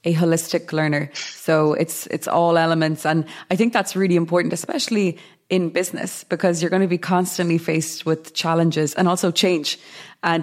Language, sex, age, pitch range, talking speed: English, female, 20-39, 160-190 Hz, 175 wpm